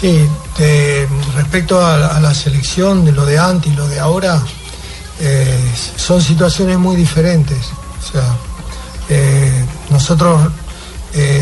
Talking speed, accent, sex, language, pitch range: 135 wpm, Argentinian, male, Spanish, 140-165 Hz